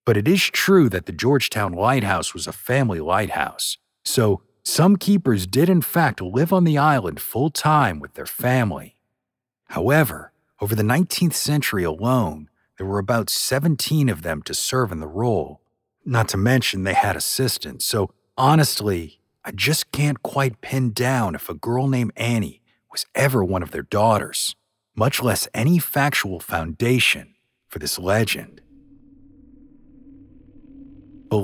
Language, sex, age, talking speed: English, male, 50-69, 145 wpm